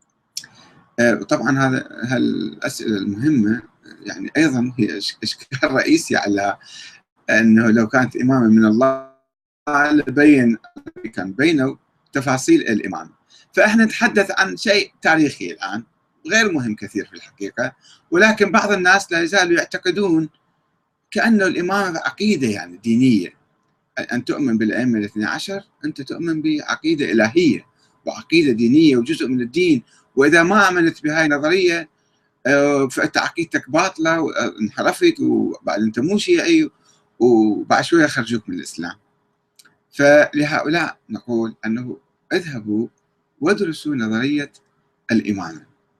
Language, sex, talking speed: Arabic, male, 105 wpm